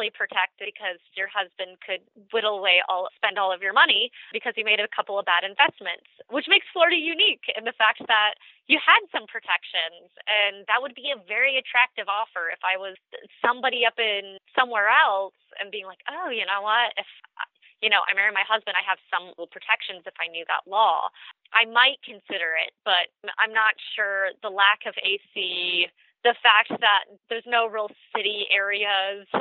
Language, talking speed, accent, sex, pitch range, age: English, 190 wpm, American, female, 195-255 Hz, 20-39